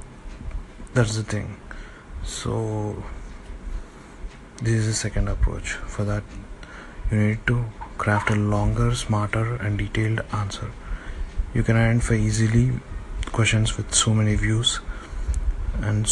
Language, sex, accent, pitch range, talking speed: English, male, Indian, 100-115 Hz, 115 wpm